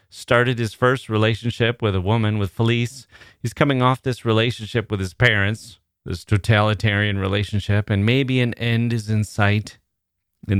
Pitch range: 95-115 Hz